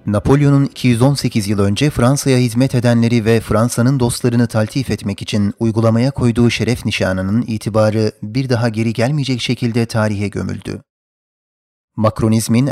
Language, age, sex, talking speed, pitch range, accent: Turkish, 30-49, male, 125 wpm, 110-125 Hz, native